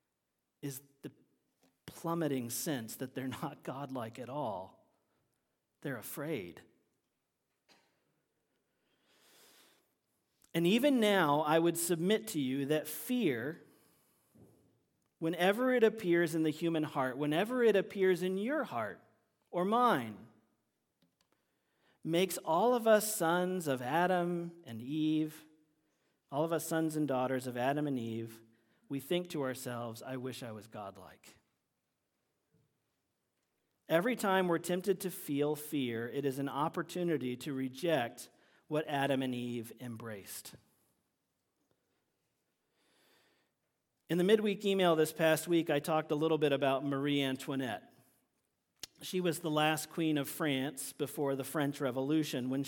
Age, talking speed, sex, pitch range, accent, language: 40-59, 125 wpm, male, 135-175 Hz, American, English